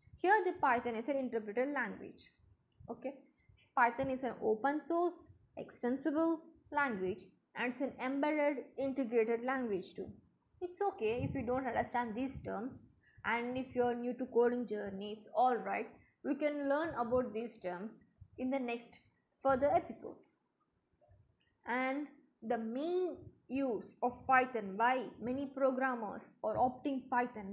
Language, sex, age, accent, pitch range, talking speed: English, female, 20-39, Indian, 230-280 Hz, 135 wpm